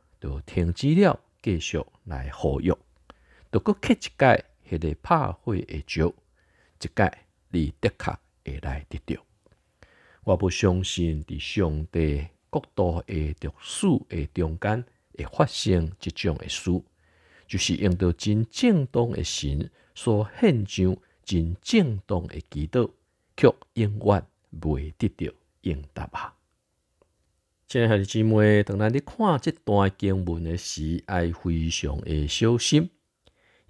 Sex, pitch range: male, 85-115 Hz